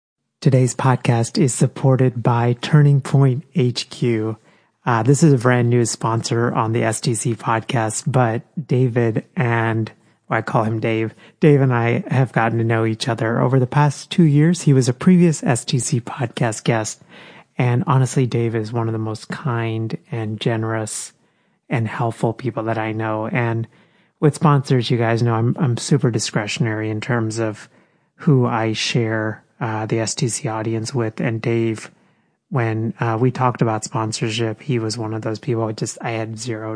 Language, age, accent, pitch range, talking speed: English, 30-49, American, 110-135 Hz, 170 wpm